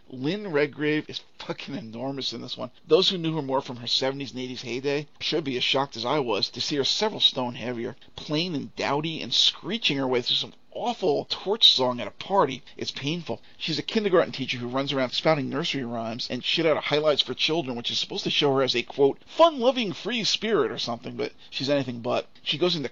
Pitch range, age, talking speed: 125-150 Hz, 40-59, 230 wpm